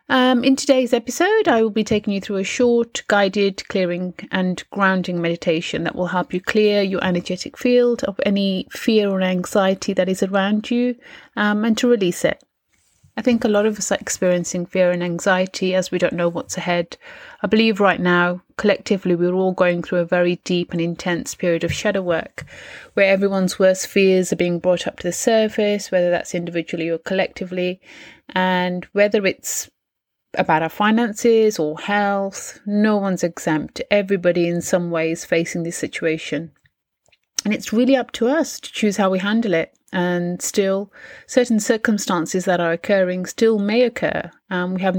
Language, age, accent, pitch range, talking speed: English, 30-49, British, 180-215 Hz, 175 wpm